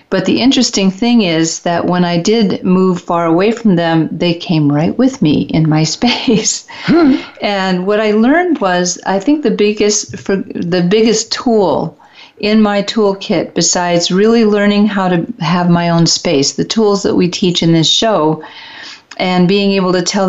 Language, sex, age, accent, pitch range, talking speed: English, female, 50-69, American, 170-215 Hz, 175 wpm